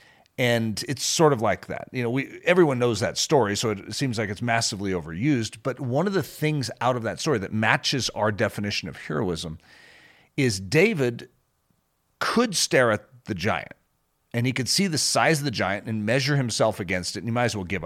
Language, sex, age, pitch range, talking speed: English, male, 40-59, 105-150 Hz, 210 wpm